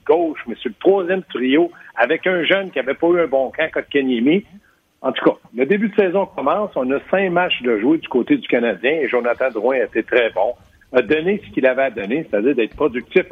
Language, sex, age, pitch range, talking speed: French, male, 60-79, 145-225 Hz, 230 wpm